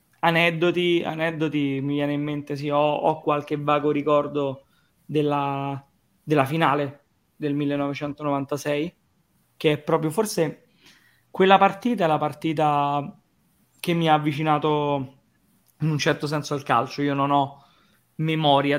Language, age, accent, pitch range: Italian, 20-39, native, 140-155 Hz